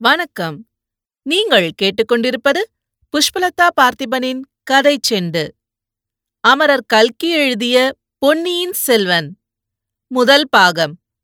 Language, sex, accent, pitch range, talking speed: Tamil, female, native, 200-265 Hz, 75 wpm